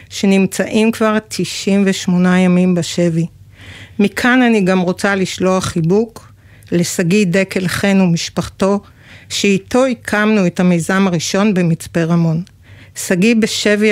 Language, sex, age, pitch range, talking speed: Hebrew, female, 50-69, 175-205 Hz, 105 wpm